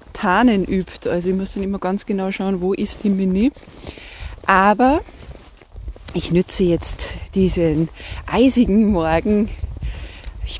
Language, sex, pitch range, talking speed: German, female, 165-215 Hz, 120 wpm